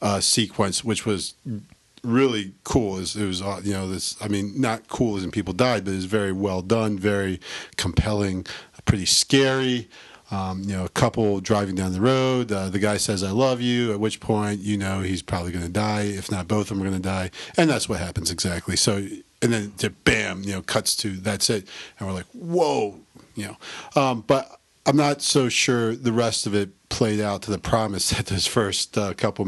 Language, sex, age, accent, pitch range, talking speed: English, male, 40-59, American, 95-115 Hz, 215 wpm